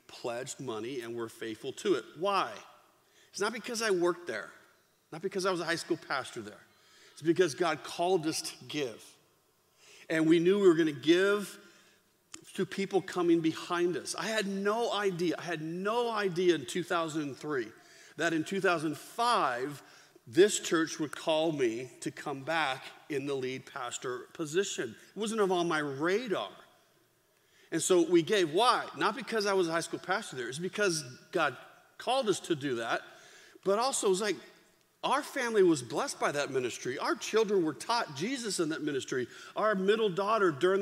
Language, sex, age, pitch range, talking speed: English, male, 40-59, 165-220 Hz, 175 wpm